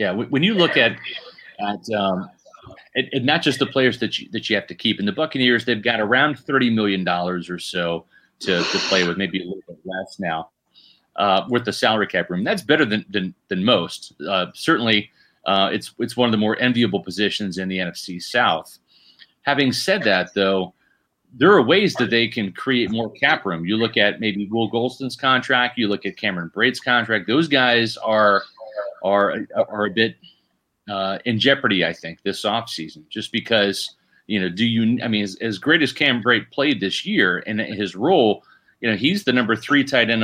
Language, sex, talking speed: English, male, 205 wpm